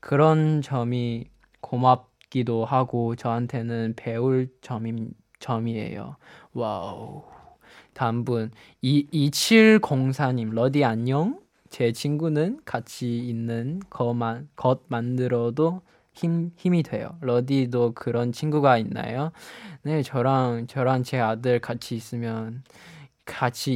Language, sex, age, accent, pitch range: Korean, male, 20-39, native, 120-160 Hz